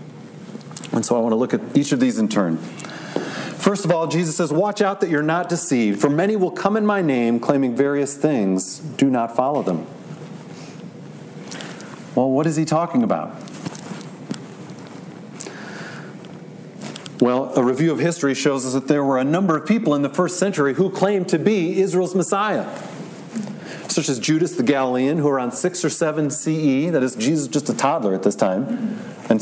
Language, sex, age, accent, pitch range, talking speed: English, male, 40-59, American, 135-185 Hz, 180 wpm